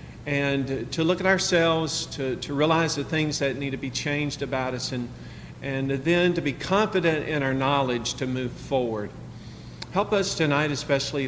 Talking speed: 175 wpm